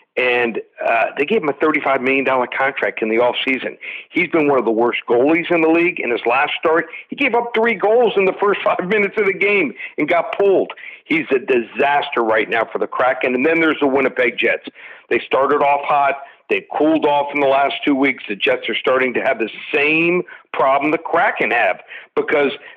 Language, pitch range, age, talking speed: English, 135-170 Hz, 50-69, 215 wpm